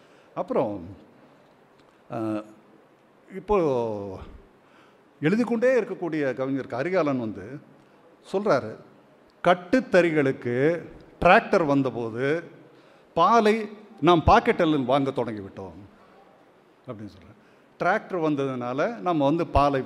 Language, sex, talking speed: Tamil, male, 70 wpm